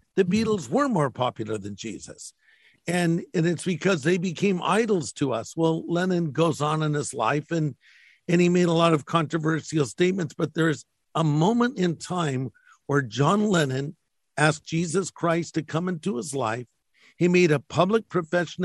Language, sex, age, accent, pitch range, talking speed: English, male, 50-69, American, 140-175 Hz, 175 wpm